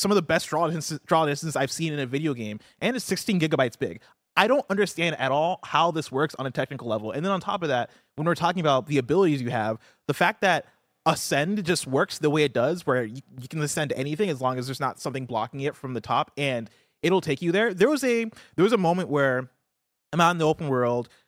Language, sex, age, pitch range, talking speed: English, male, 20-39, 130-180 Hz, 250 wpm